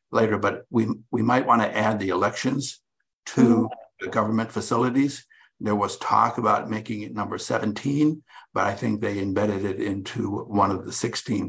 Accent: American